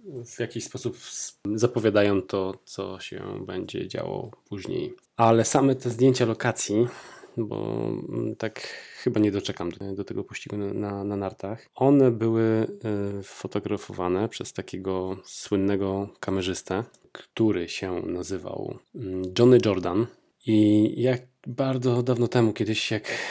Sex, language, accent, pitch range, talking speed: male, Polish, native, 100-115 Hz, 115 wpm